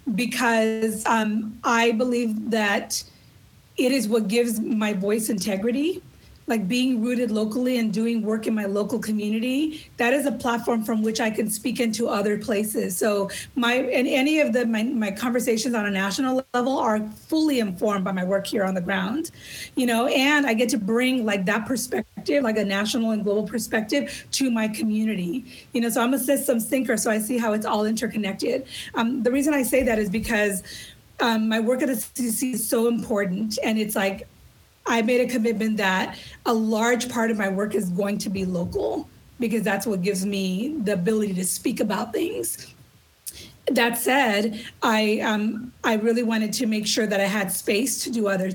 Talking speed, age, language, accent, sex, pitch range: 190 wpm, 30-49, English, American, female, 210-245 Hz